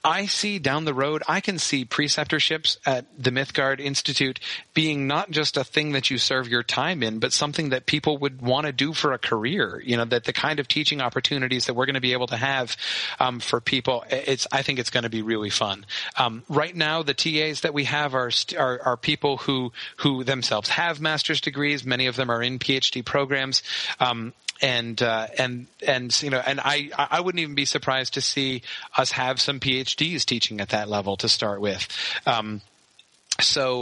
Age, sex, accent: 30-49, male, American